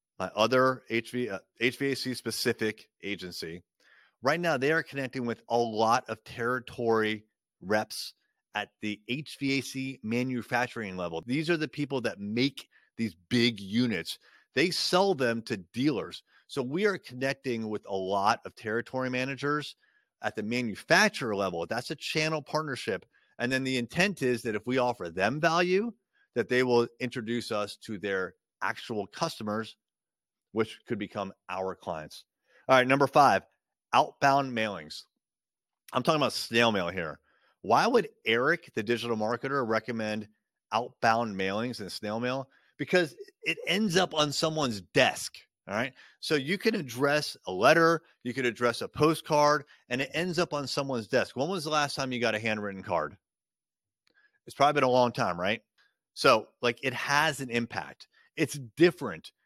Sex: male